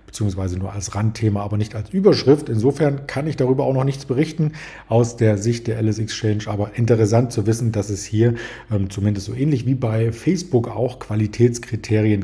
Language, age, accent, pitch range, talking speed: German, 40-59, German, 110-130 Hz, 185 wpm